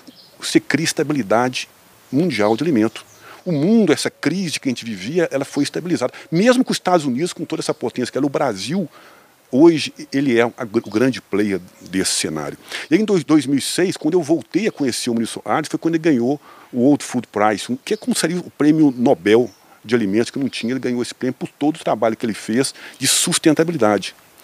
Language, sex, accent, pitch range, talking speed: Portuguese, male, Brazilian, 115-170 Hz, 210 wpm